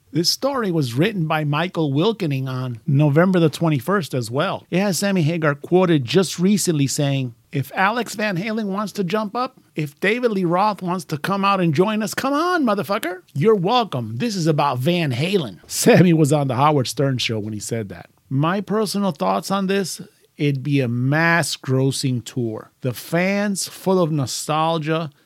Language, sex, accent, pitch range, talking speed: English, male, American, 140-185 Hz, 185 wpm